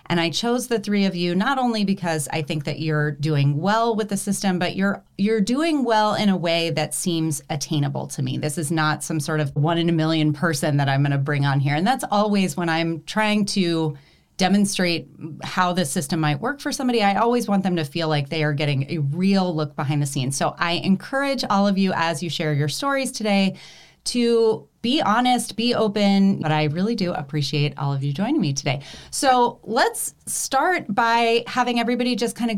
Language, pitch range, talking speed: English, 160-215 Hz, 215 wpm